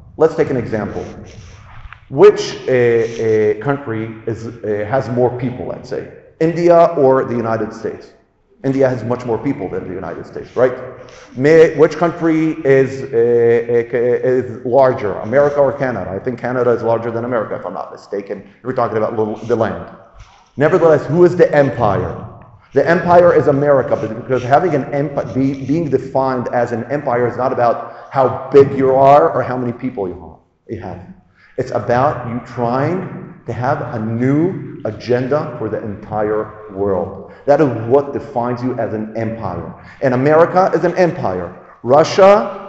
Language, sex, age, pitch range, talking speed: Hebrew, male, 40-59, 115-150 Hz, 165 wpm